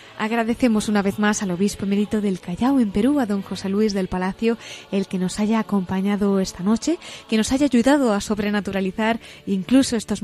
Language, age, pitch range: Spanish, 20-39, 200-245 Hz